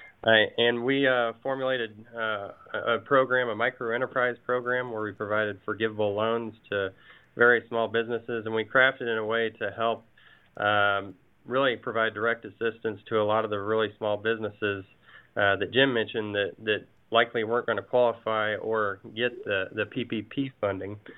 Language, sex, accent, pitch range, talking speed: English, male, American, 105-120 Hz, 165 wpm